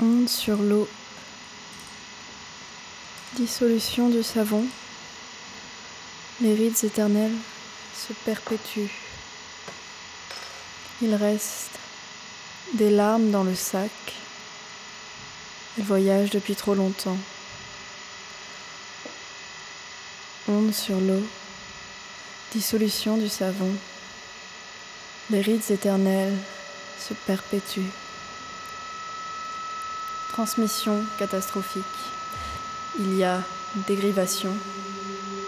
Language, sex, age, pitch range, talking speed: French, female, 20-39, 180-215 Hz, 70 wpm